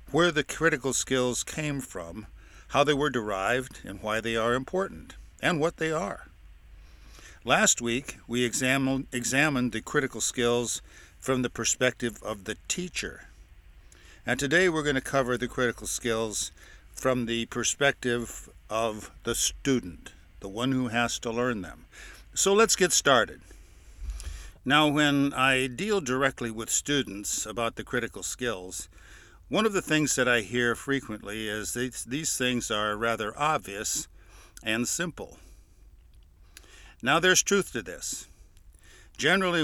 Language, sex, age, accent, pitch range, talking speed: English, male, 60-79, American, 100-135 Hz, 140 wpm